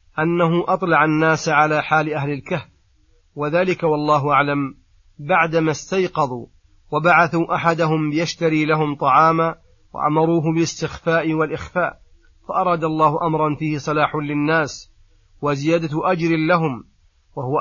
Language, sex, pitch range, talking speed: Arabic, male, 145-165 Hz, 100 wpm